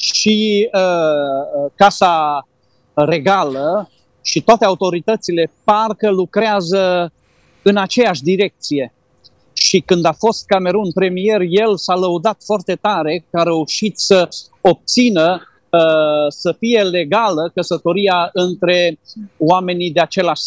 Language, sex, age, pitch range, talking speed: Romanian, male, 40-59, 155-210 Hz, 110 wpm